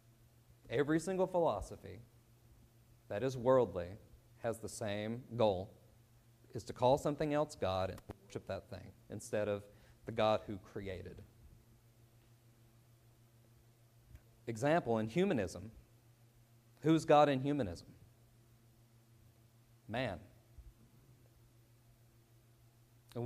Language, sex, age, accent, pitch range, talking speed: English, male, 40-59, American, 115-125 Hz, 90 wpm